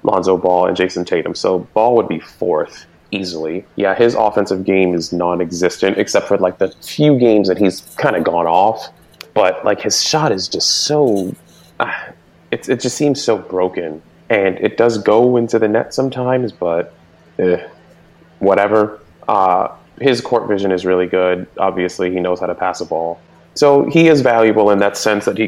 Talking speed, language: 180 wpm, English